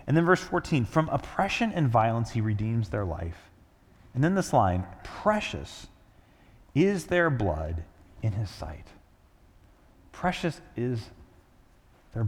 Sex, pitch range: male, 95-130 Hz